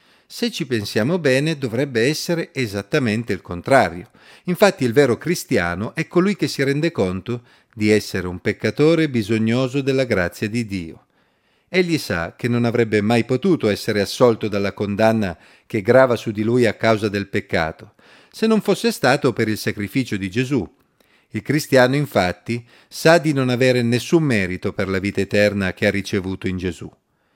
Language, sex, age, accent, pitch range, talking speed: Italian, male, 40-59, native, 105-145 Hz, 165 wpm